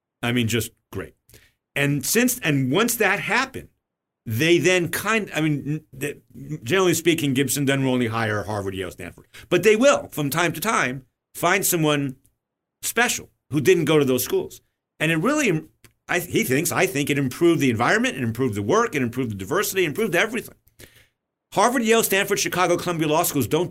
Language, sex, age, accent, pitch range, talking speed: English, male, 50-69, American, 120-180 Hz, 180 wpm